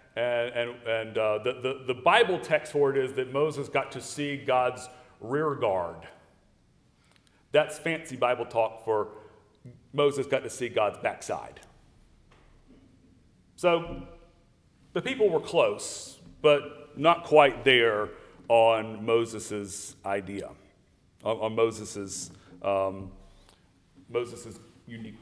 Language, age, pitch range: English, 40-59, 115-160 Hz